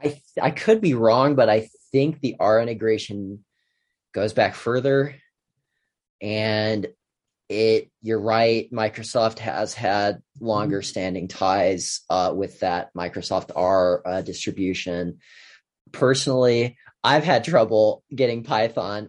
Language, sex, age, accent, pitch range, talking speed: English, male, 30-49, American, 105-120 Hz, 120 wpm